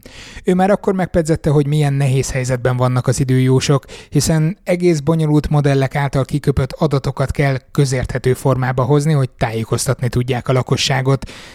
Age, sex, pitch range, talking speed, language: 20-39, male, 125-150 Hz, 140 wpm, Hungarian